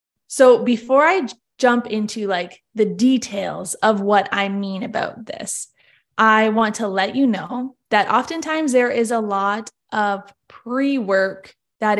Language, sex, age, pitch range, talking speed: English, female, 20-39, 205-250 Hz, 145 wpm